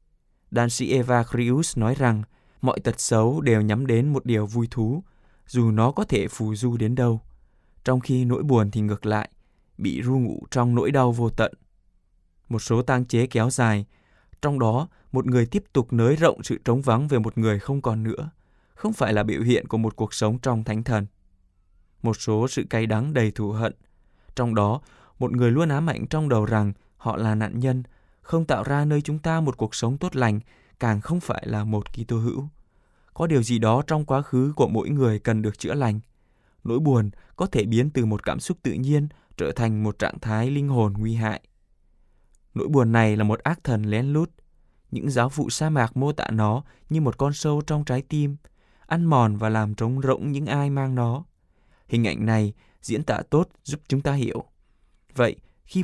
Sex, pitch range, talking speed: male, 110-135 Hz, 210 wpm